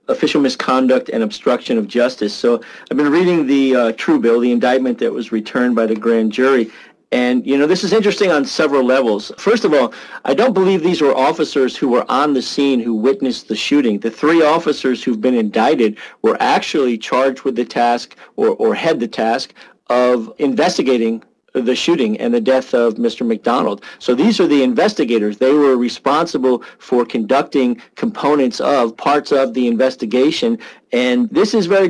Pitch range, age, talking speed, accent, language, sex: 120-160 Hz, 40-59, 180 wpm, American, English, male